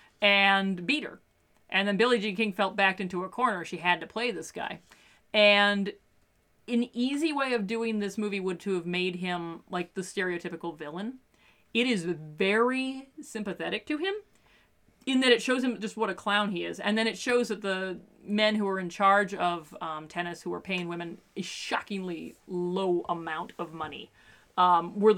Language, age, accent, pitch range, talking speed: English, 40-59, American, 180-235 Hz, 190 wpm